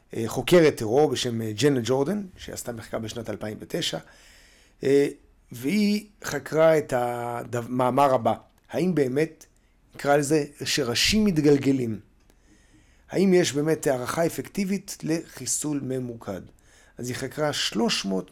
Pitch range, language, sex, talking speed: 120-160 Hz, Hebrew, male, 105 wpm